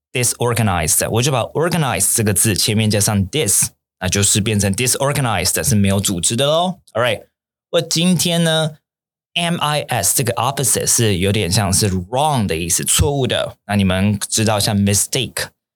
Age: 20-39